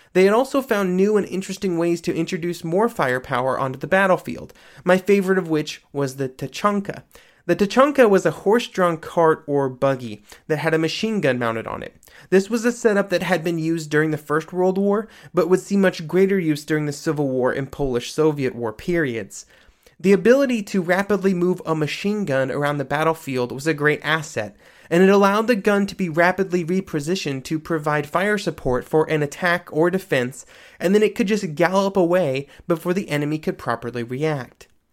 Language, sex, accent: English, male, American